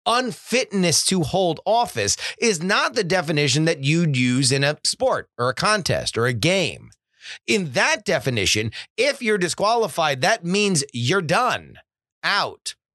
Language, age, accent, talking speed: English, 30-49, American, 145 wpm